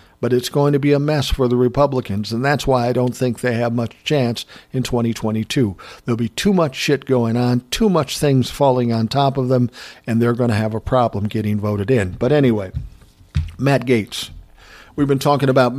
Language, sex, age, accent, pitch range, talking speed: English, male, 50-69, American, 115-135 Hz, 210 wpm